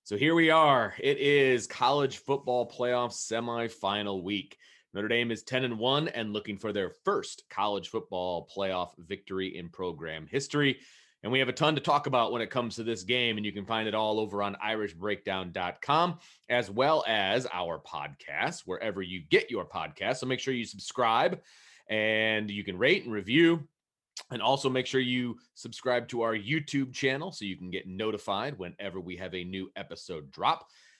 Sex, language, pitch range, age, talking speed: male, English, 100-135 Hz, 30-49, 185 wpm